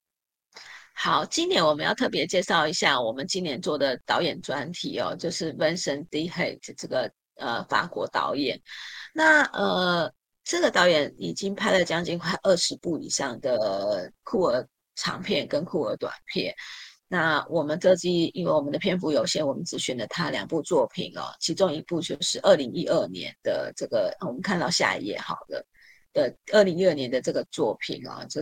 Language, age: Chinese, 30-49